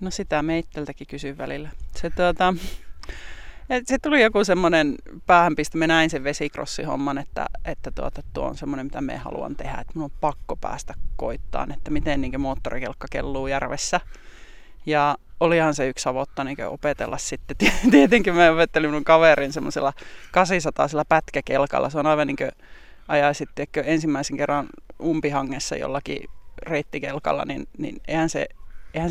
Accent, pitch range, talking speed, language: native, 145-170 Hz, 150 wpm, Finnish